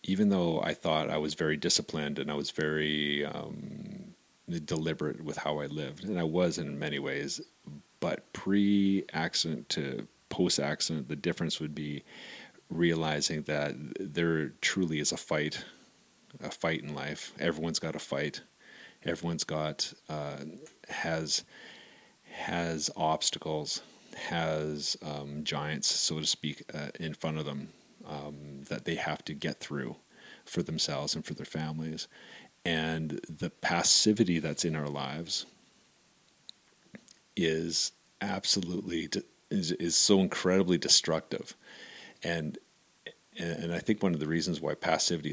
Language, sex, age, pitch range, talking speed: English, male, 30-49, 75-85 Hz, 135 wpm